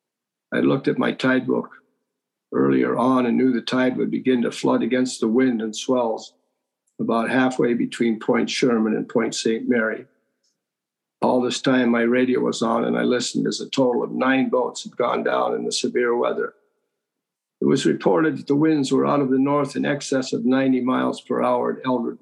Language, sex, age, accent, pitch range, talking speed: English, male, 50-69, American, 110-140 Hz, 195 wpm